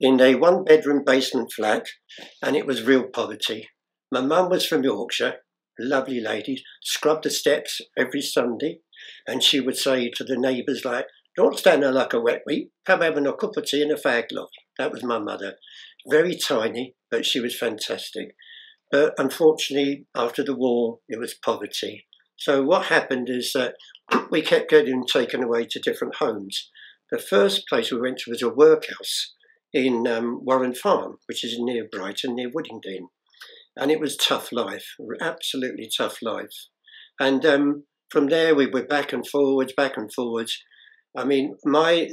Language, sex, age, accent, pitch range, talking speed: English, male, 60-79, British, 120-150 Hz, 175 wpm